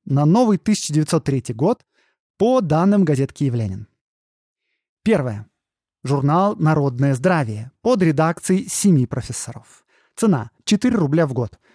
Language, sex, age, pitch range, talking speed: Russian, male, 20-39, 130-200 Hz, 110 wpm